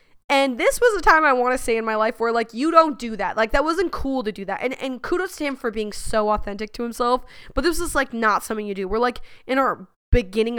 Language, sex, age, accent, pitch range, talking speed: English, female, 20-39, American, 215-265 Hz, 280 wpm